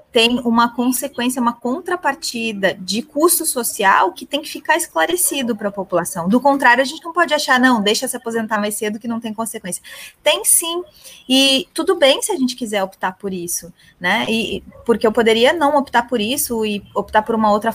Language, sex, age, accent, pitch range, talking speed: Portuguese, female, 20-39, Brazilian, 205-275 Hz, 200 wpm